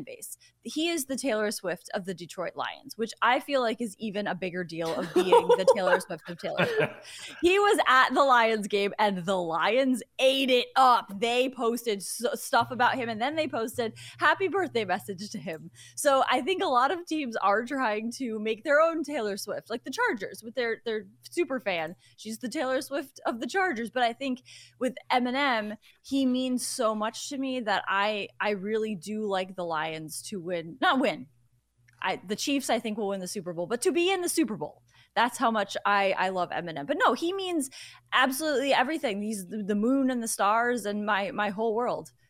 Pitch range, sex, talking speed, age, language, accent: 200-265 Hz, female, 205 wpm, 20-39, English, American